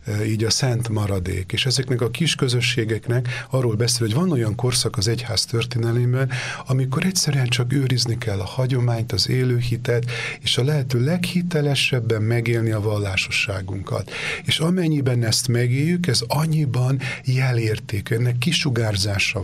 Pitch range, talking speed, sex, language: 110-130 Hz, 135 wpm, male, Hungarian